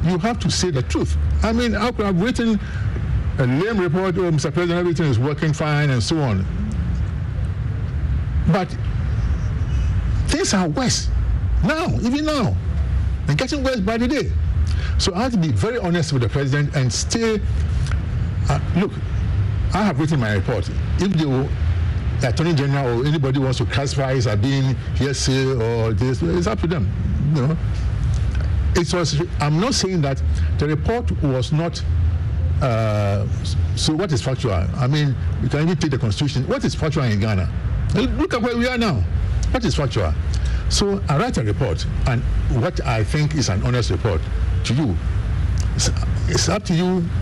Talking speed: 170 wpm